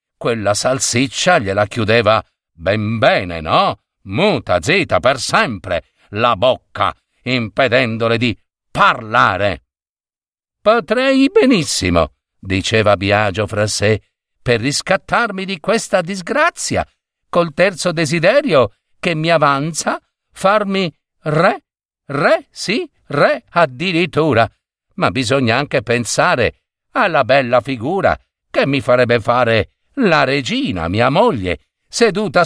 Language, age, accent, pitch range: Italian, 50-69, native, 120-200 Hz